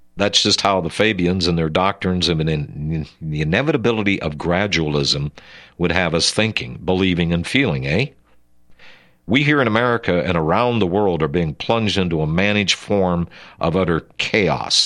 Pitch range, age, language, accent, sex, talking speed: 80-105 Hz, 50-69, English, American, male, 165 wpm